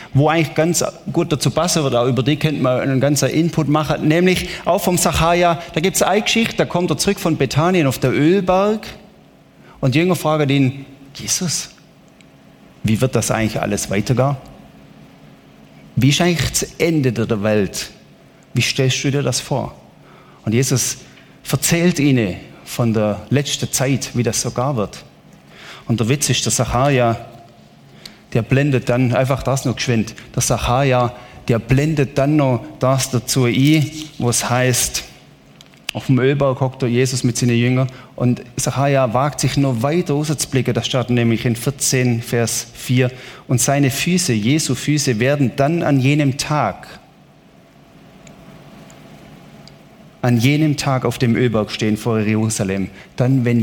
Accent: German